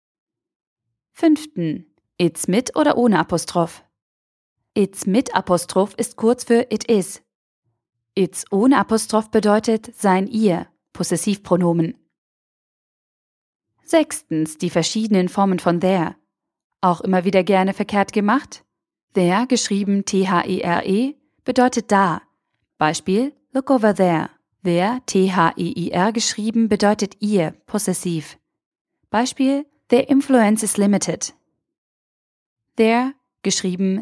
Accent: German